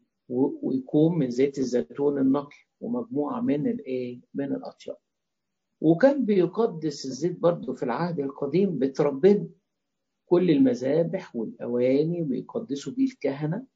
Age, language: 50-69, English